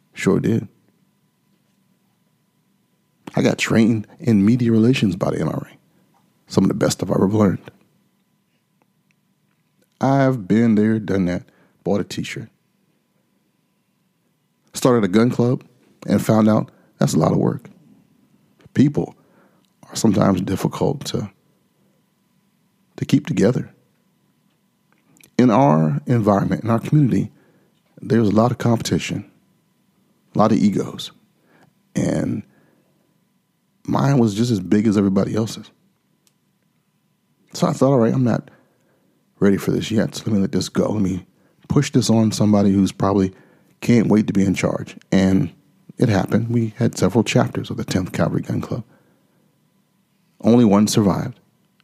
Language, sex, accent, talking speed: English, male, American, 140 wpm